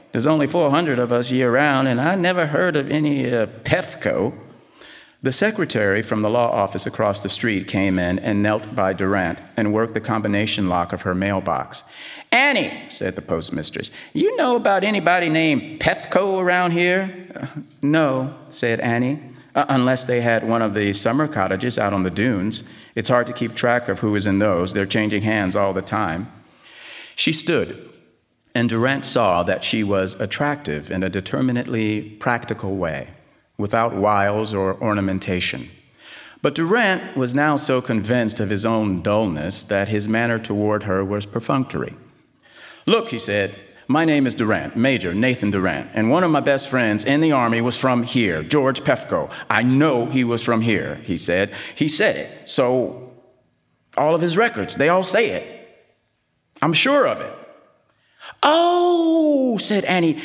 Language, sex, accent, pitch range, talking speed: English, male, American, 105-160 Hz, 165 wpm